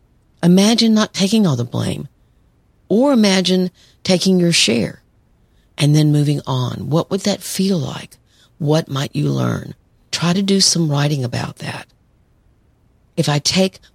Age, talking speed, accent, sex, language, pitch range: 50-69, 145 wpm, American, female, English, 130-165 Hz